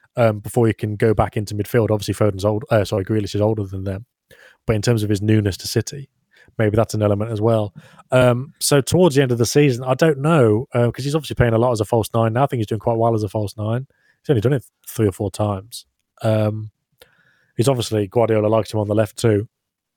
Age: 20-39